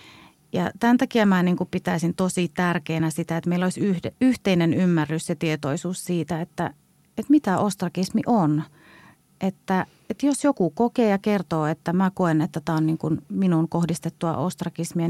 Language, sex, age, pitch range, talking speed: Finnish, female, 30-49, 165-200 Hz, 165 wpm